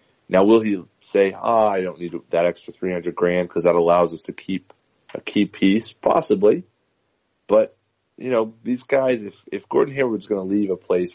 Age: 30-49